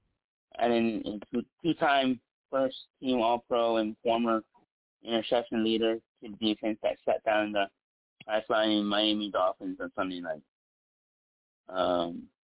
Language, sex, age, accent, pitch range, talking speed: English, male, 30-49, American, 105-125 Hz, 150 wpm